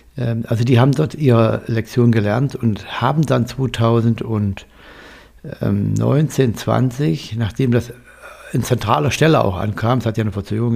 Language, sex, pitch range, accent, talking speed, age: German, male, 105-125 Hz, German, 135 wpm, 60-79